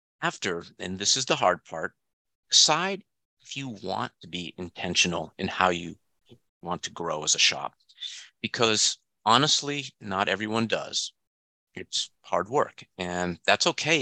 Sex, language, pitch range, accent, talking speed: male, English, 85-115 Hz, American, 145 wpm